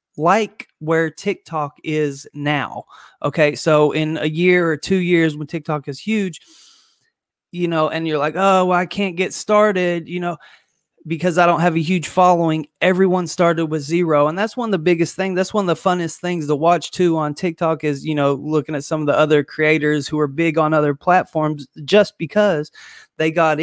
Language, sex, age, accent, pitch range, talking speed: English, male, 20-39, American, 145-180 Hz, 200 wpm